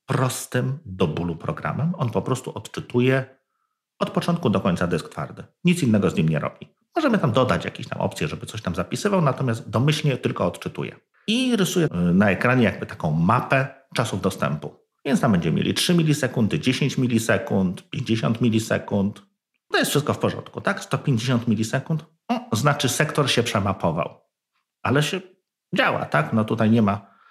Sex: male